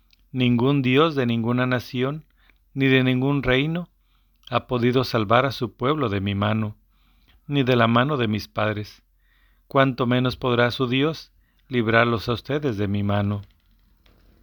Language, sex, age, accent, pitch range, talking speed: Spanish, male, 40-59, Mexican, 110-130 Hz, 150 wpm